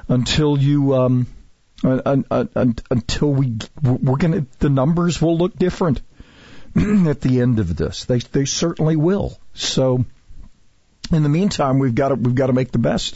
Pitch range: 110-145 Hz